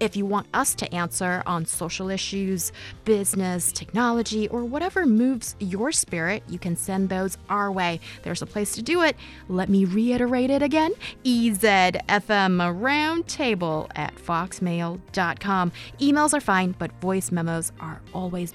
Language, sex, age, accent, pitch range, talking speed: English, female, 20-39, American, 175-235 Hz, 140 wpm